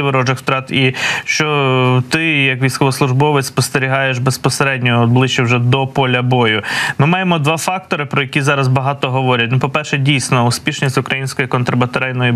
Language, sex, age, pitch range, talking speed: Ukrainian, male, 20-39, 125-145 Hz, 140 wpm